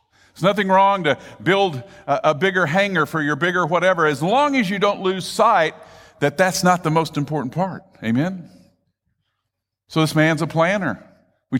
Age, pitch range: 50-69, 125-185 Hz